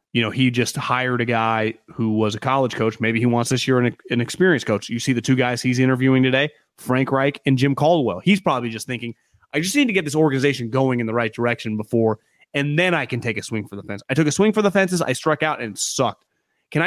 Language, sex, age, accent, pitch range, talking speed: English, male, 30-49, American, 125-165 Hz, 265 wpm